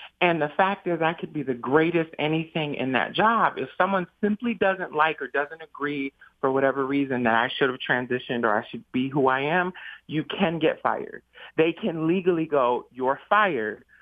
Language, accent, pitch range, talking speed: English, American, 145-205 Hz, 195 wpm